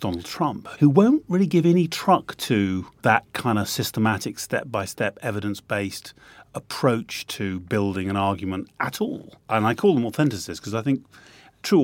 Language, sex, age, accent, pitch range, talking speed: English, male, 30-49, British, 100-130 Hz, 155 wpm